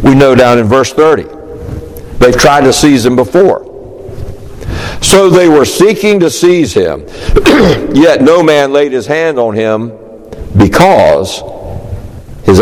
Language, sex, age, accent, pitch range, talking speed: English, male, 60-79, American, 110-155 Hz, 140 wpm